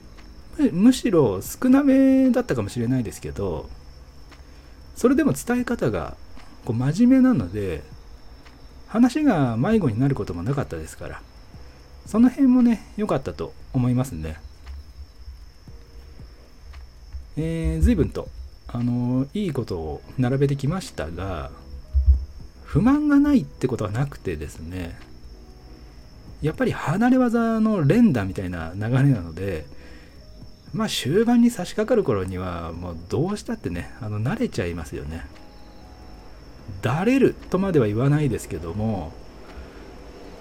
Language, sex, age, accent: Japanese, male, 40-59, native